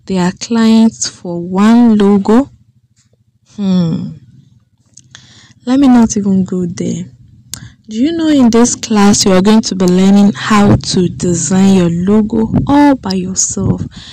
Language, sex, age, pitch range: English, female, 20-39, 180-225 Hz